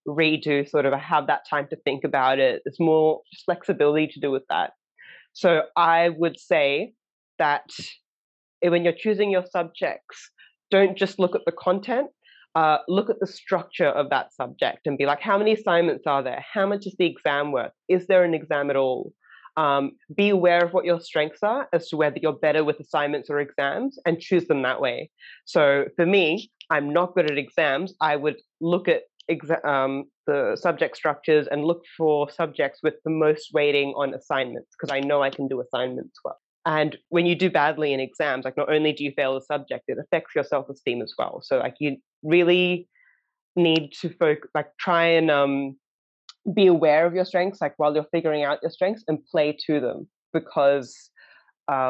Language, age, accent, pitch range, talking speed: English, 20-39, Australian, 145-180 Hz, 190 wpm